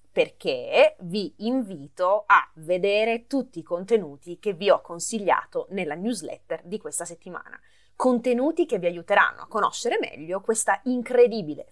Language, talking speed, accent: Italian, 135 wpm, native